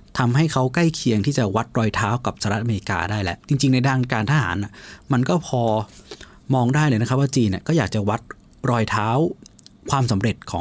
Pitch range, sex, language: 105-135 Hz, male, Thai